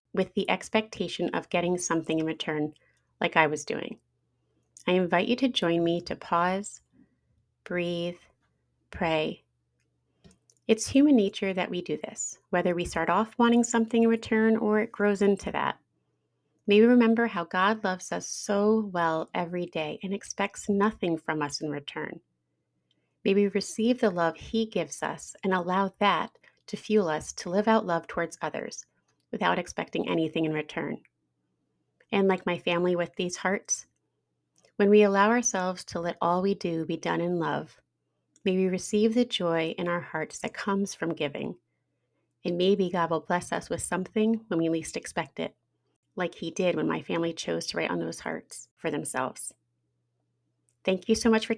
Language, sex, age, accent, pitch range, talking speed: English, female, 30-49, American, 160-205 Hz, 175 wpm